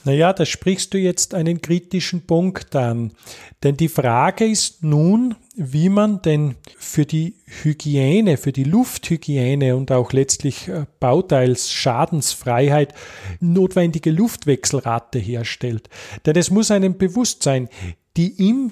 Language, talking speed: German, 125 wpm